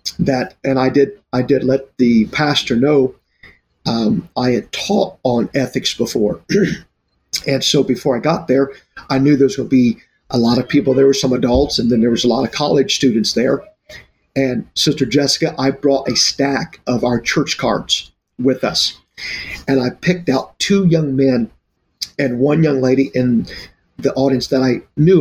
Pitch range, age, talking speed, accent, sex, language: 125-145 Hz, 50-69, 185 wpm, American, male, English